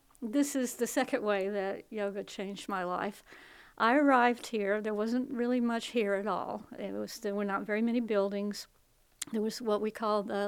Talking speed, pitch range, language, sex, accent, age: 195 wpm, 205-245 Hz, English, female, American, 60-79